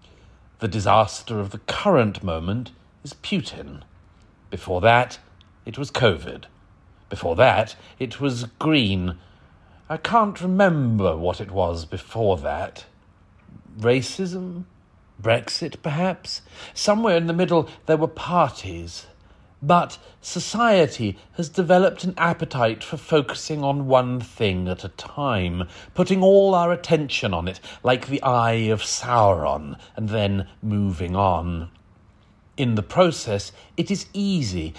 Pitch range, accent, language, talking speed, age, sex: 95-145 Hz, British, English, 120 wpm, 40-59, male